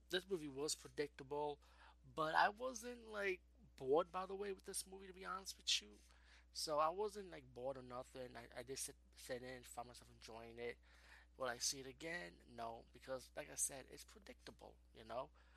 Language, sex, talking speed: English, male, 195 wpm